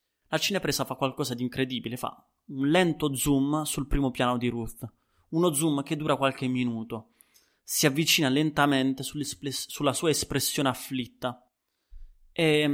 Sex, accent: male, native